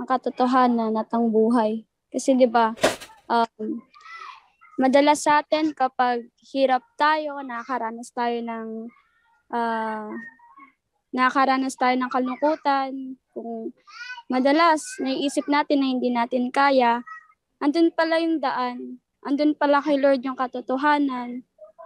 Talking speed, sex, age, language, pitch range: 105 wpm, female, 20-39, Filipino, 240-295 Hz